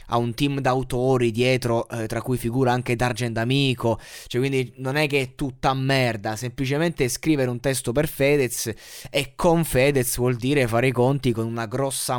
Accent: native